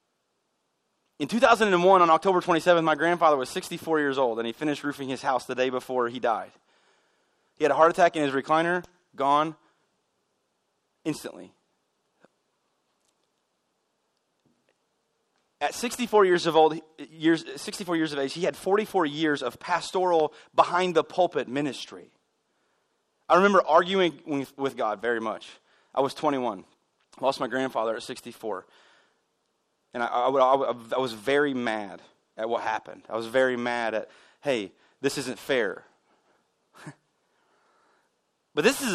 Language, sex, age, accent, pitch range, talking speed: English, male, 30-49, American, 130-180 Hz, 135 wpm